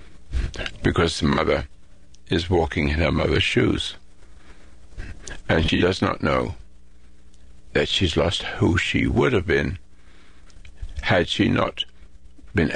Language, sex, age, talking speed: English, male, 60-79, 120 wpm